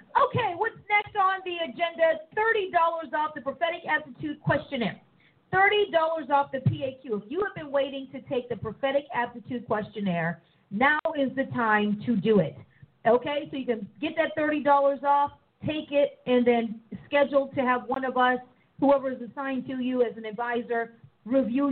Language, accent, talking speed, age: English, American, 170 wpm, 40-59